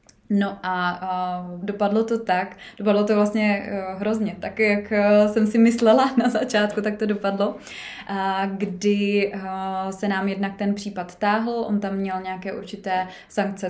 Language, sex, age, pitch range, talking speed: Czech, female, 20-39, 185-210 Hz, 140 wpm